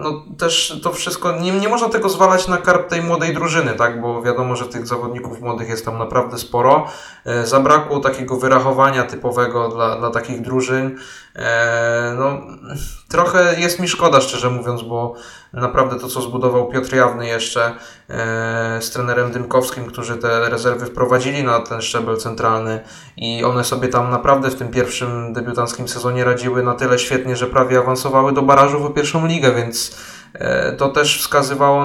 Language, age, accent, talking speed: Polish, 20-39, native, 165 wpm